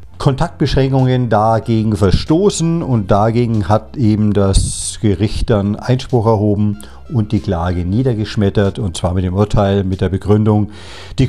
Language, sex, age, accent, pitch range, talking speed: English, male, 50-69, German, 105-130 Hz, 135 wpm